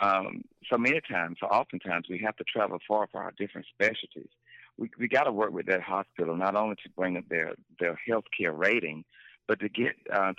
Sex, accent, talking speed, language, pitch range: male, American, 210 wpm, English, 90-110 Hz